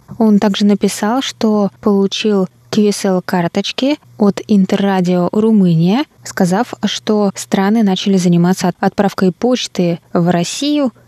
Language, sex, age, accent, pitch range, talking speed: Russian, female, 20-39, native, 180-210 Hz, 100 wpm